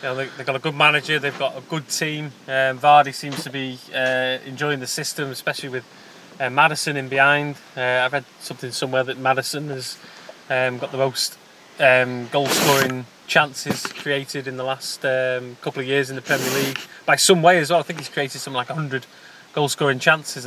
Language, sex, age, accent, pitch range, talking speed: English, male, 20-39, British, 130-155 Hz, 200 wpm